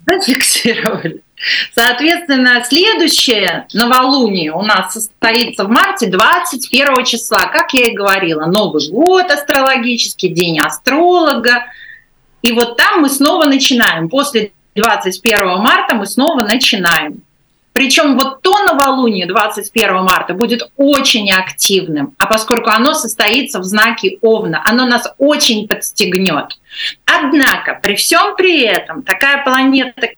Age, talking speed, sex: 30-49, 115 wpm, female